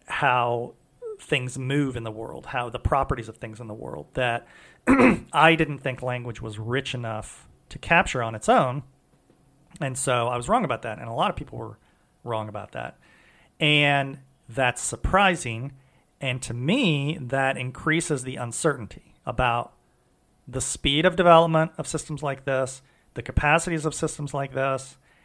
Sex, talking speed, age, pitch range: male, 160 wpm, 40-59, 125-160 Hz